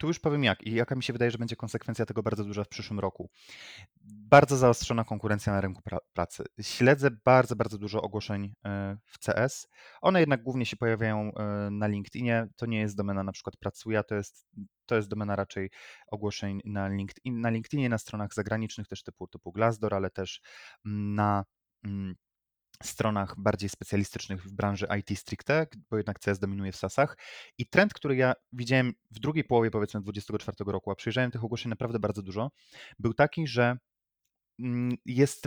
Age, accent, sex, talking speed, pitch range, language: 20-39, native, male, 180 wpm, 105-125 Hz, Polish